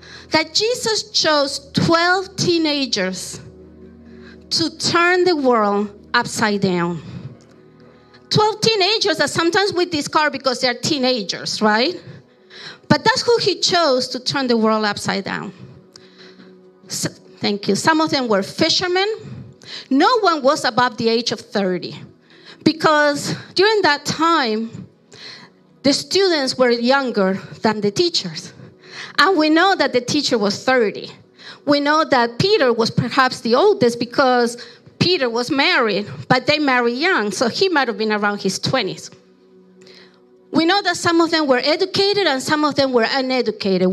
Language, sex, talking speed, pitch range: English, female, 140 wpm, 205-315 Hz